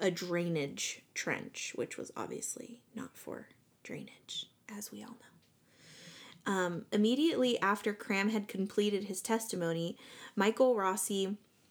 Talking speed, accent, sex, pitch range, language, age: 120 wpm, American, female, 180-215 Hz, English, 20-39